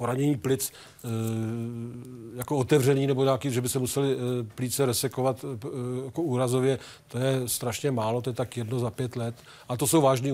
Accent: native